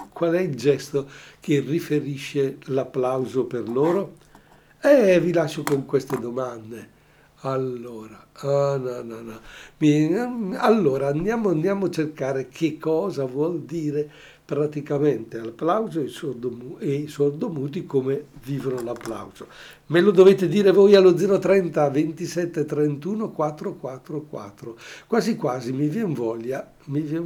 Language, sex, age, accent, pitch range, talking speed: Italian, male, 60-79, native, 135-170 Hz, 105 wpm